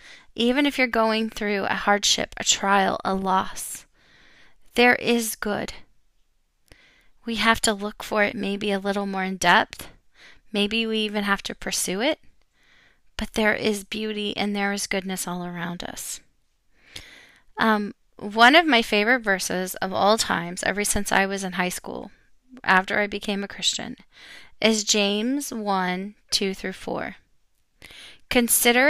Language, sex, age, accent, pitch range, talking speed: English, female, 20-39, American, 200-250 Hz, 150 wpm